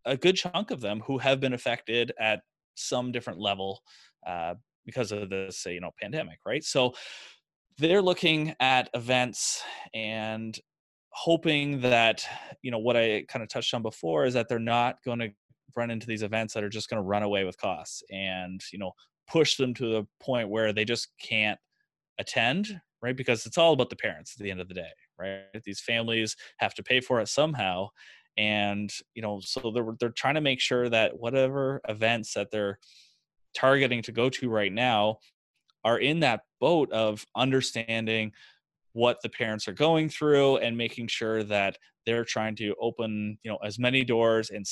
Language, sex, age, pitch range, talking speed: English, male, 20-39, 105-130 Hz, 190 wpm